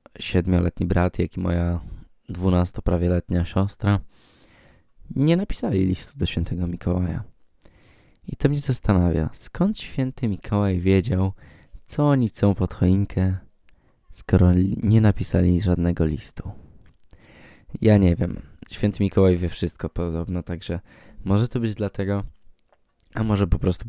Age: 20-39